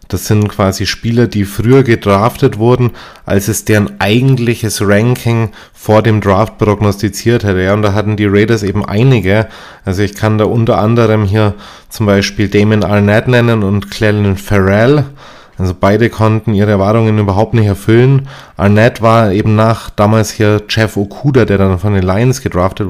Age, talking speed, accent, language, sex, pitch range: 20-39, 165 wpm, German, German, male, 105-120 Hz